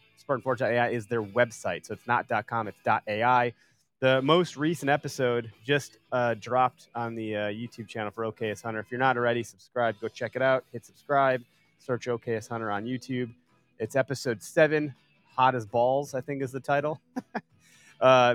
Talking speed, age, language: 175 wpm, 30-49, English